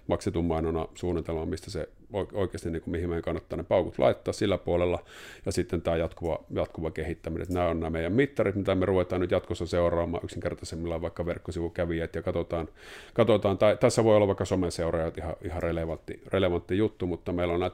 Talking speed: 185 wpm